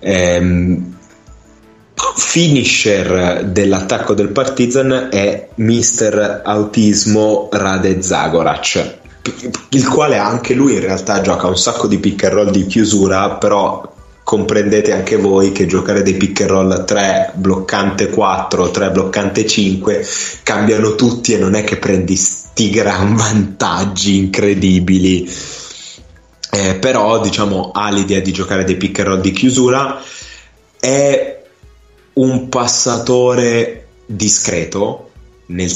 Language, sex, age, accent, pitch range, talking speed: Italian, male, 20-39, native, 90-110 Hz, 115 wpm